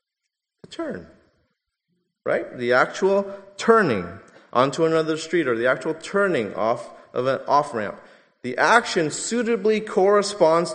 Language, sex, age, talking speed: English, male, 30-49, 115 wpm